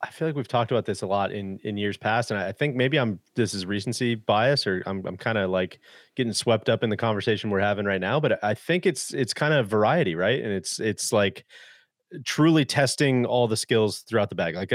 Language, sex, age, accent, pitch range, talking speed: English, male, 30-49, American, 105-125 Hz, 245 wpm